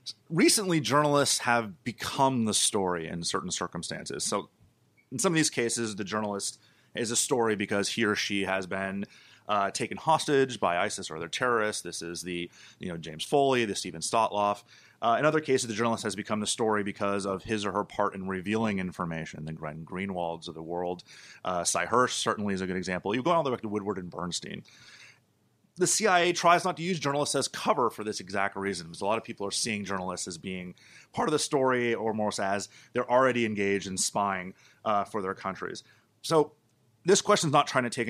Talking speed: 210 wpm